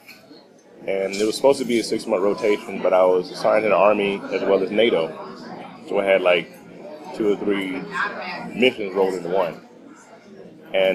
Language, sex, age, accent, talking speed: English, male, 30-49, American, 180 wpm